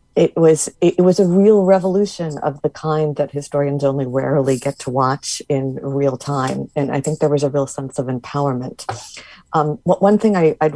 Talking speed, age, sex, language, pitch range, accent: 200 wpm, 50-69, female, English, 140-175 Hz, American